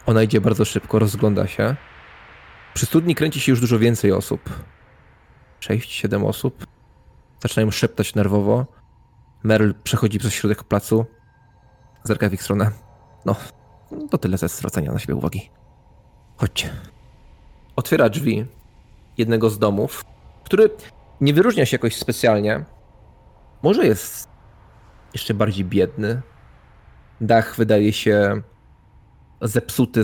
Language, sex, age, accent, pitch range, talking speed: English, male, 20-39, Polish, 105-115 Hz, 115 wpm